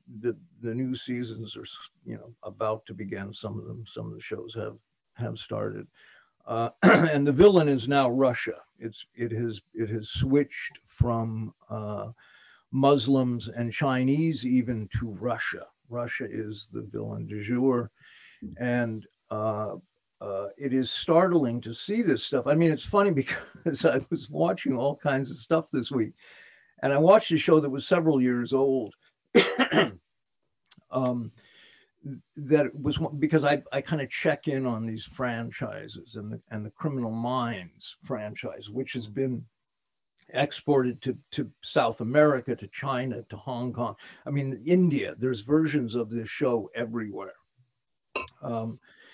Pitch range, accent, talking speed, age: 115-140 Hz, American, 155 wpm, 50-69